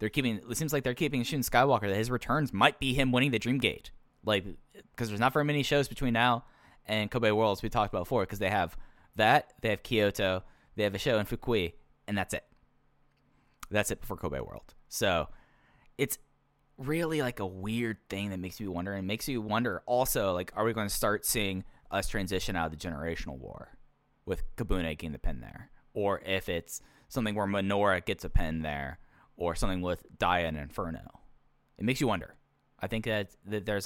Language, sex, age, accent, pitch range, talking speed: English, male, 10-29, American, 95-120 Hz, 210 wpm